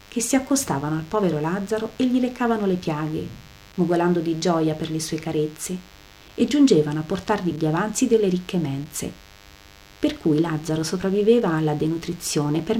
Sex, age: female, 40-59